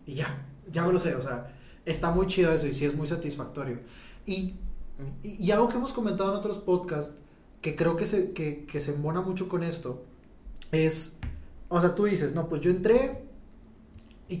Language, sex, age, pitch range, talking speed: Spanish, male, 20-39, 145-180 Hz, 200 wpm